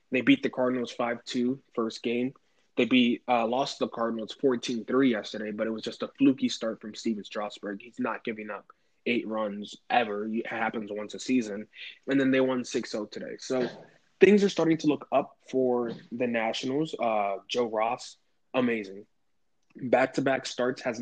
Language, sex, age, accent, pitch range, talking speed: English, male, 20-39, American, 110-130 Hz, 170 wpm